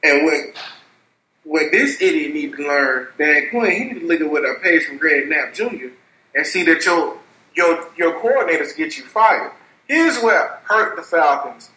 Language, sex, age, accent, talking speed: English, male, 30-49, American, 180 wpm